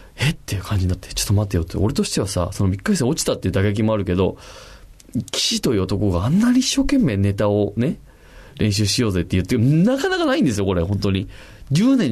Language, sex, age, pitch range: Japanese, male, 20-39, 105-155 Hz